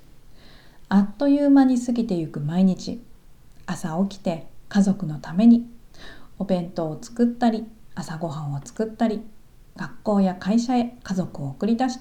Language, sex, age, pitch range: Japanese, female, 40-59, 185-235 Hz